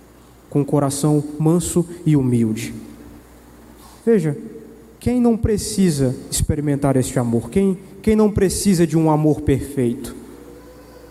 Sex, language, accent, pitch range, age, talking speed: male, Portuguese, Brazilian, 135-180 Hz, 20-39, 110 wpm